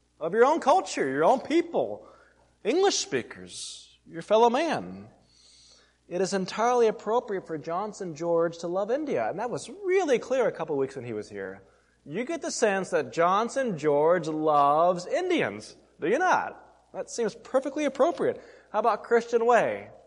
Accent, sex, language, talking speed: American, male, English, 165 wpm